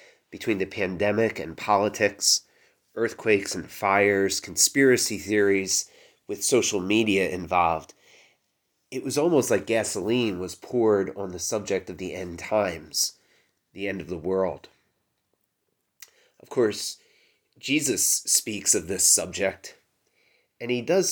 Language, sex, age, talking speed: English, male, 30-49, 120 wpm